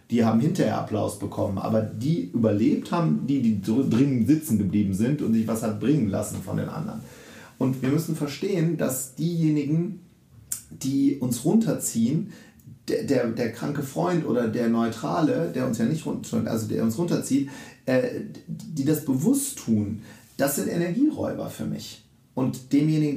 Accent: German